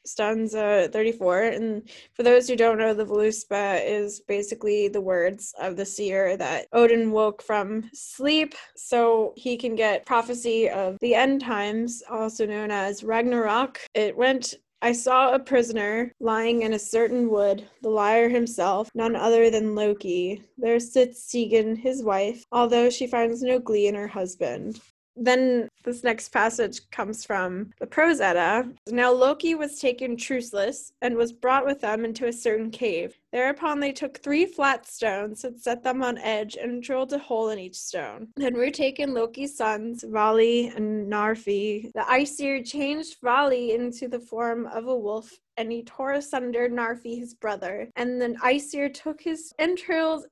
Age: 10-29